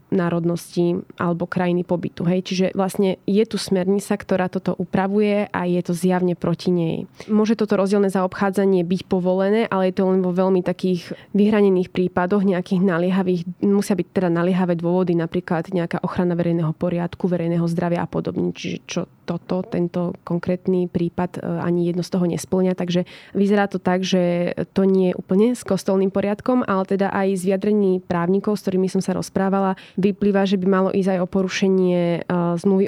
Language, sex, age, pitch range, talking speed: Slovak, female, 20-39, 175-195 Hz, 170 wpm